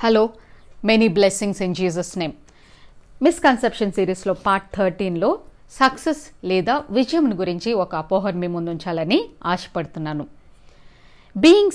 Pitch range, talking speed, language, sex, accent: 180-260 Hz, 105 wpm, Telugu, female, native